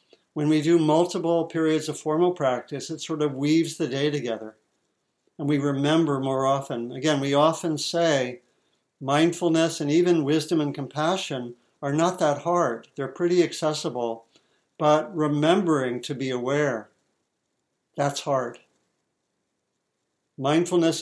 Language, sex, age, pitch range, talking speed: English, male, 60-79, 130-155 Hz, 130 wpm